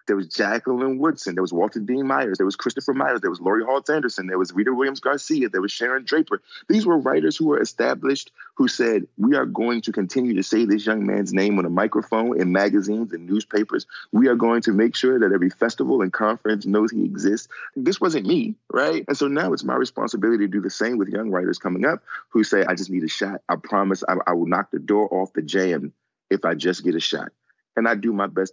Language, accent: English, American